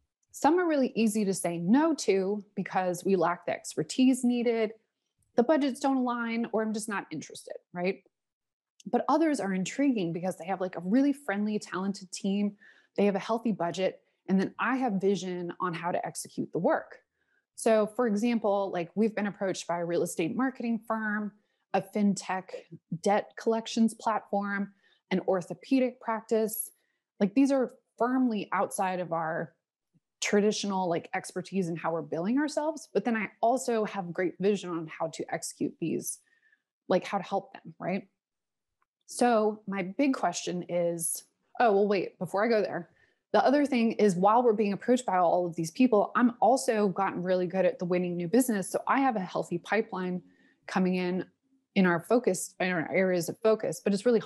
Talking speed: 180 wpm